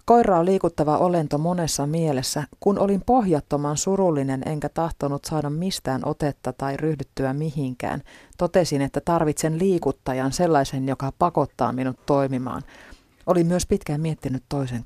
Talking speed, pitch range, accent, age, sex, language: 125 wpm, 135-165 Hz, native, 30-49, female, Finnish